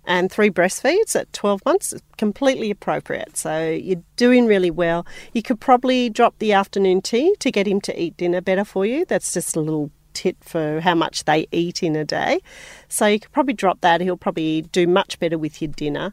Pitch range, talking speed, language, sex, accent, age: 175-235 Hz, 210 wpm, English, female, Australian, 40-59